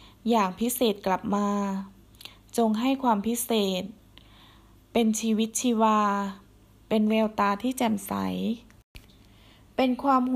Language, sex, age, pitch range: Thai, female, 20-39, 200-250 Hz